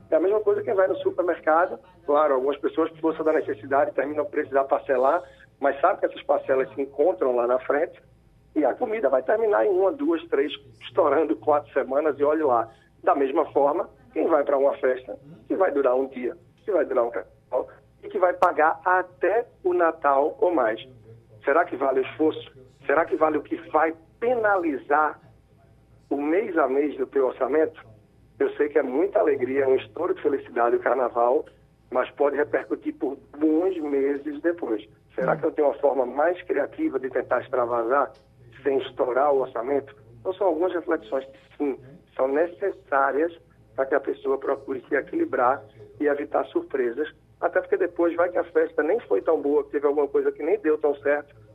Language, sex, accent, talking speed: Portuguese, male, Brazilian, 190 wpm